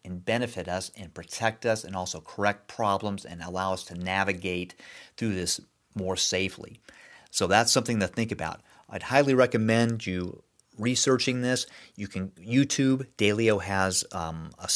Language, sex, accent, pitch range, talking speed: English, male, American, 90-115 Hz, 155 wpm